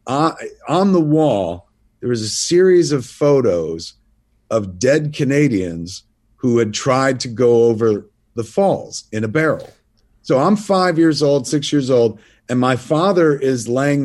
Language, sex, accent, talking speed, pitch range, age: English, male, American, 160 wpm, 115-160 Hz, 40-59